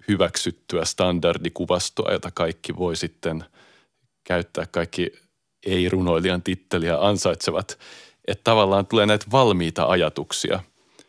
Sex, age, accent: male, 30-49, native